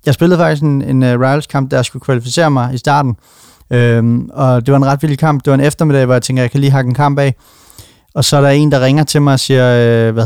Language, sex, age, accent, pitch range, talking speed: Danish, male, 30-49, native, 120-140 Hz, 285 wpm